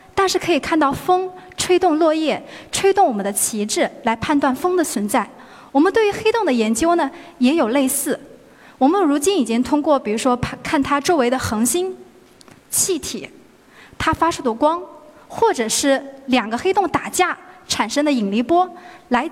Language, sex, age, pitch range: Chinese, female, 20-39, 240-360 Hz